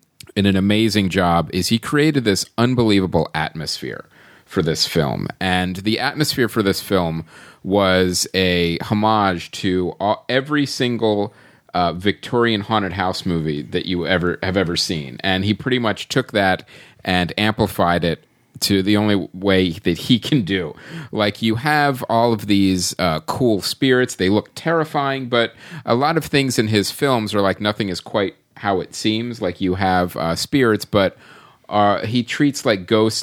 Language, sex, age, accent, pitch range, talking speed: English, male, 30-49, American, 90-120 Hz, 170 wpm